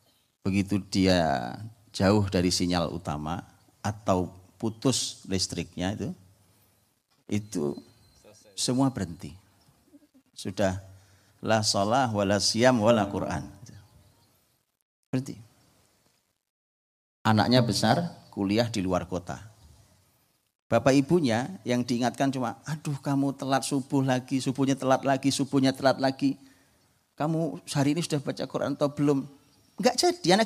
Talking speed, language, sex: 100 wpm, Indonesian, male